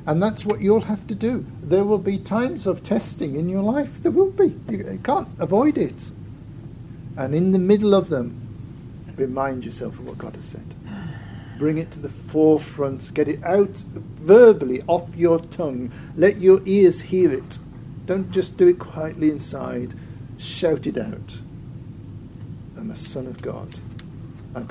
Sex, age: male, 50-69